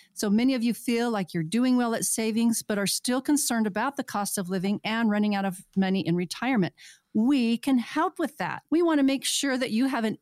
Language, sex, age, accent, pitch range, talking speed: English, female, 40-59, American, 190-245 Hz, 240 wpm